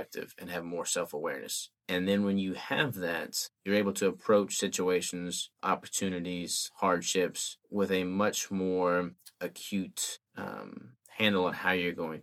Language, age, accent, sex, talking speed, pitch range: English, 20-39, American, male, 135 wpm, 90-100 Hz